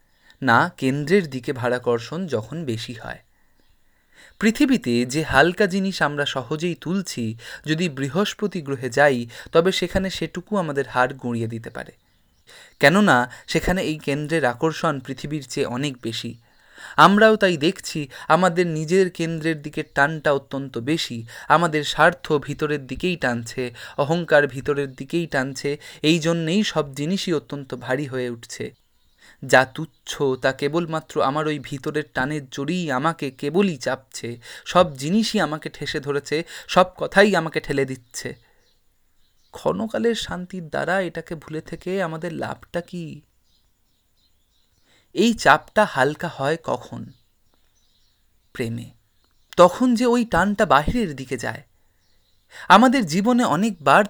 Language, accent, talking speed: Hindi, native, 105 wpm